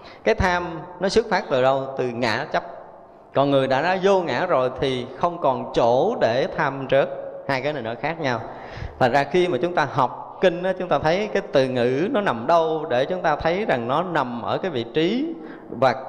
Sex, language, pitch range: male, Vietnamese, 130-170 Hz